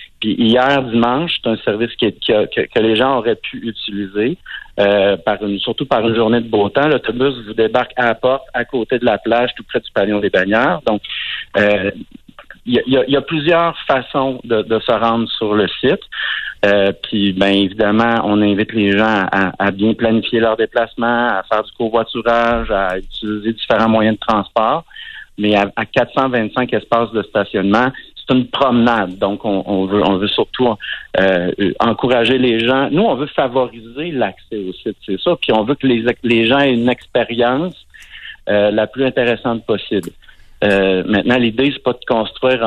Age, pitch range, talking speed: 50-69, 105-125 Hz, 190 wpm